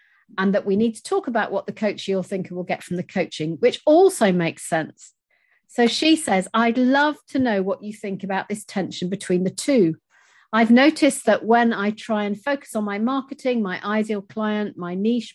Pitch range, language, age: 185-235 Hz, English, 50-69